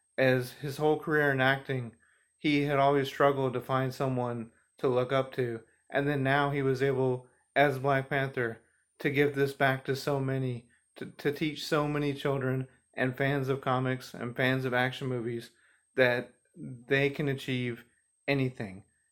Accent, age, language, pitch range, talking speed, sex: American, 30-49, English, 115-140 Hz, 165 wpm, male